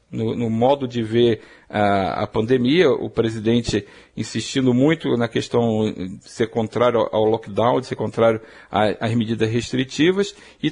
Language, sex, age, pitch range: Portuguese, male, 50-69, 115-185 Hz